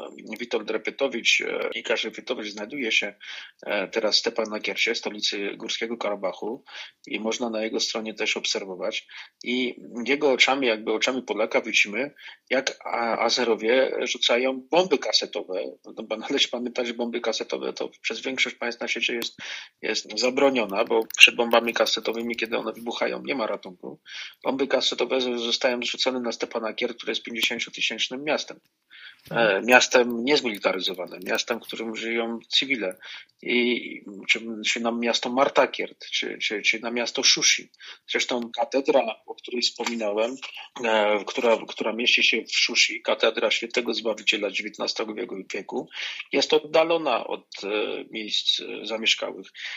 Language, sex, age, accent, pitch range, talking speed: Polish, male, 30-49, native, 115-130 Hz, 125 wpm